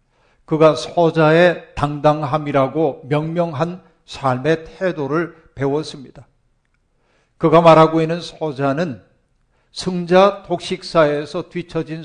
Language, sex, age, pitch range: Korean, male, 50-69, 140-175 Hz